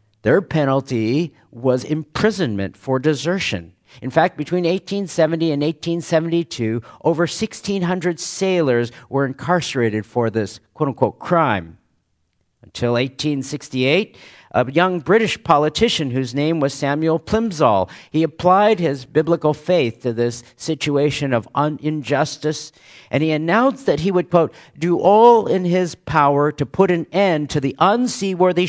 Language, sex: English, male